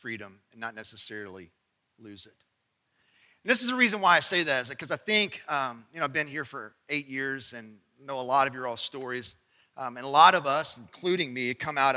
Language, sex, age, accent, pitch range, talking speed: English, male, 40-59, American, 120-190 Hz, 230 wpm